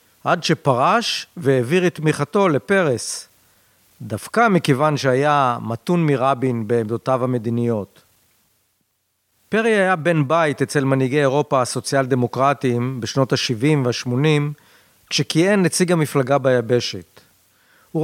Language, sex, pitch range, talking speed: Hebrew, male, 130-180 Hz, 95 wpm